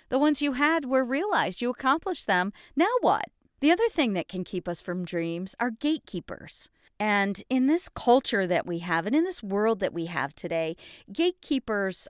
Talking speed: 190 wpm